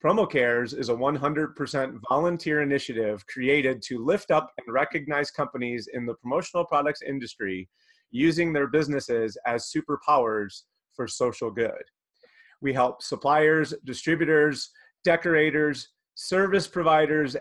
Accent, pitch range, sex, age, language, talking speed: American, 125-155 Hz, male, 30-49, English, 115 wpm